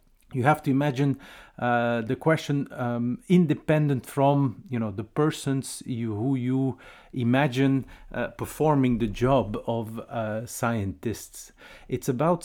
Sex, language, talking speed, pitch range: male, English, 130 wpm, 115-150 Hz